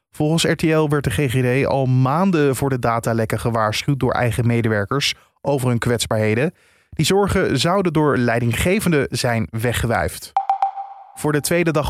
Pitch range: 120-155 Hz